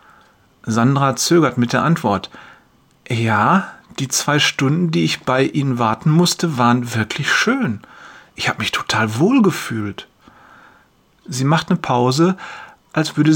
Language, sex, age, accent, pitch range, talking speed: German, male, 40-59, German, 120-170 Hz, 130 wpm